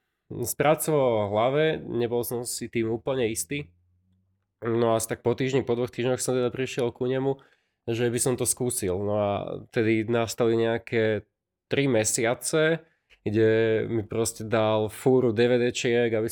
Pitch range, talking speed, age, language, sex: 110-130 Hz, 155 wpm, 20-39, Slovak, male